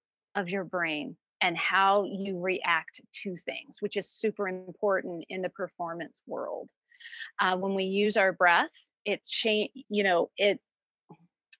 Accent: American